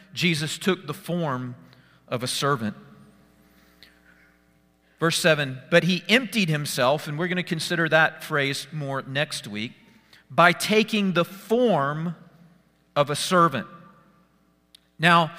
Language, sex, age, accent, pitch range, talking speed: English, male, 40-59, American, 155-195 Hz, 120 wpm